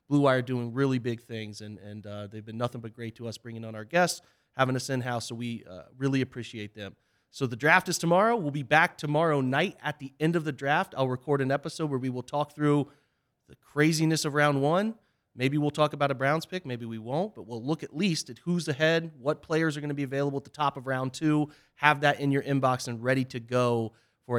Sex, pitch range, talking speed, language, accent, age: male, 120-145 Hz, 250 wpm, English, American, 30-49